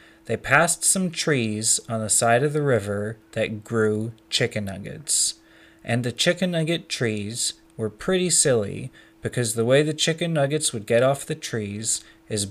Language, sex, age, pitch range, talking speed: English, male, 30-49, 110-140 Hz, 165 wpm